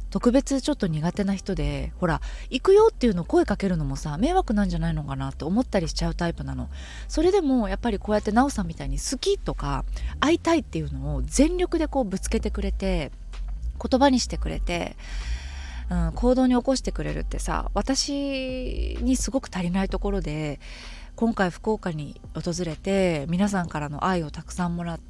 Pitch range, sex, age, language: 155-230 Hz, female, 20-39, Japanese